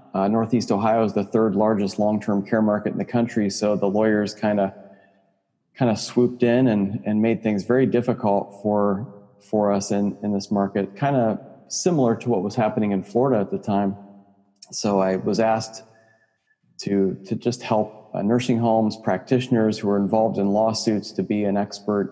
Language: English